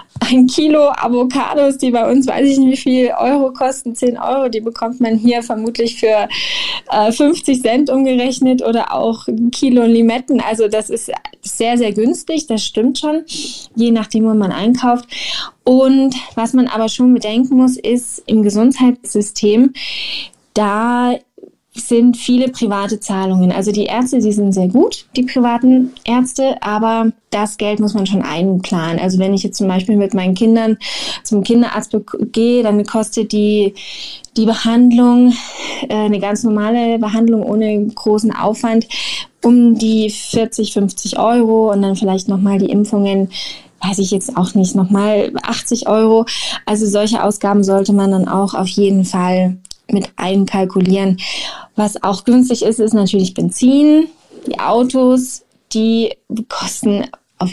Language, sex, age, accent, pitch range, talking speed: German, female, 10-29, German, 205-250 Hz, 150 wpm